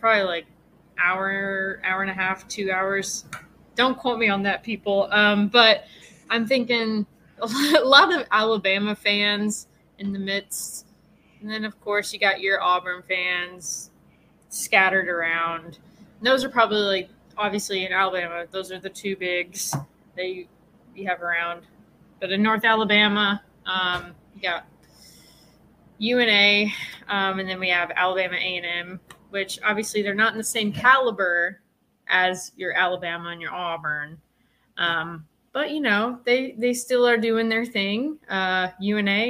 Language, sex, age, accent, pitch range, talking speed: English, female, 20-39, American, 185-225 Hz, 155 wpm